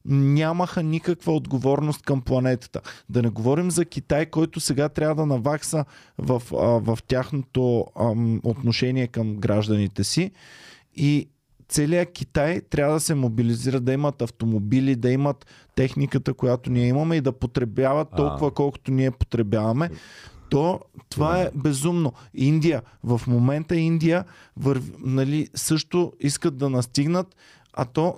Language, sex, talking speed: Bulgarian, male, 135 wpm